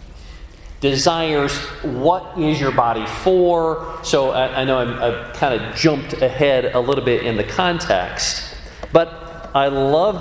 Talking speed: 145 wpm